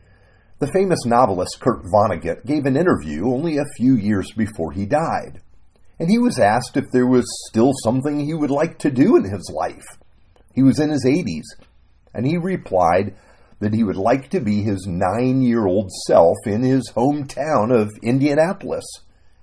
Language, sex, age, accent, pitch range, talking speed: English, male, 50-69, American, 100-150 Hz, 165 wpm